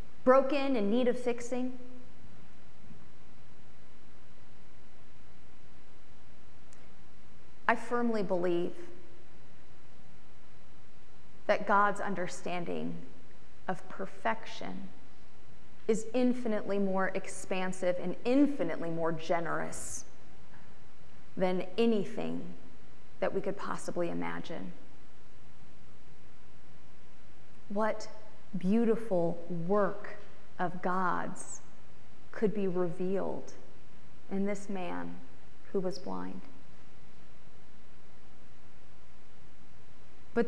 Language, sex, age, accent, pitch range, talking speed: English, female, 30-49, American, 180-220 Hz, 65 wpm